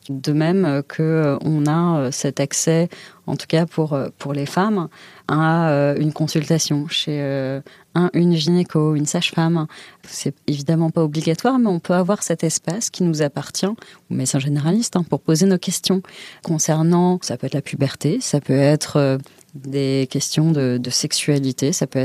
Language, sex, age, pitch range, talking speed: French, female, 30-49, 140-170 Hz, 170 wpm